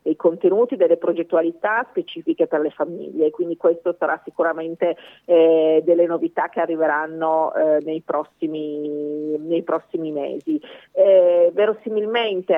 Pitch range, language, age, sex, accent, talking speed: 160-195 Hz, Italian, 40-59, female, native, 115 wpm